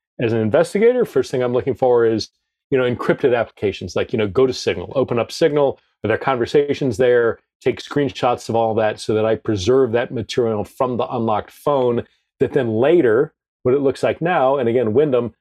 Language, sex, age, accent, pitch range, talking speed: English, male, 40-59, American, 120-185 Hz, 200 wpm